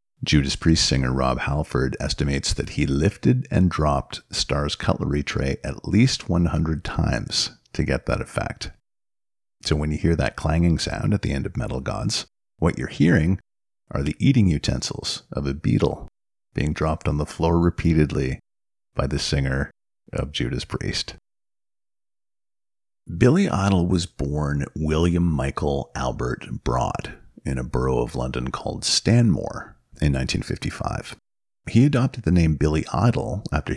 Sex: male